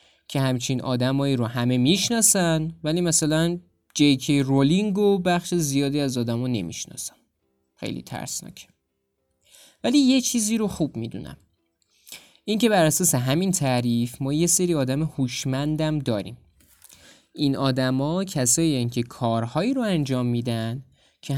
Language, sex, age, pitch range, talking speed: Persian, male, 20-39, 115-165 Hz, 120 wpm